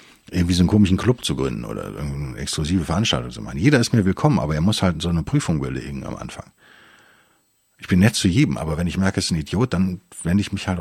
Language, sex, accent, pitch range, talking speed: German, male, German, 80-110 Hz, 250 wpm